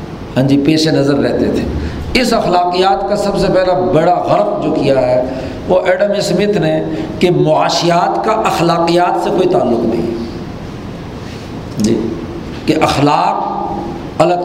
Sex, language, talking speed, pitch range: male, Urdu, 140 wpm, 150-195 Hz